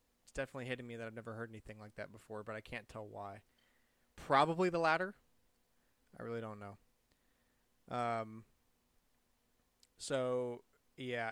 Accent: American